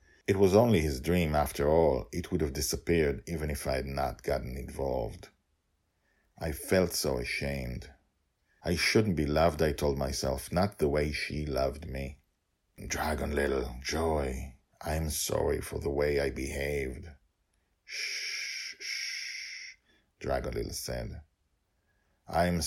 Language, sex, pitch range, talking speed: English, male, 70-80 Hz, 135 wpm